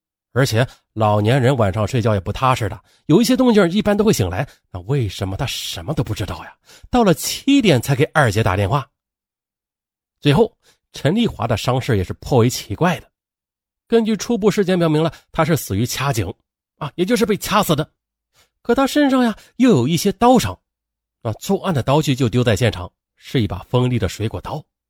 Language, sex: Chinese, male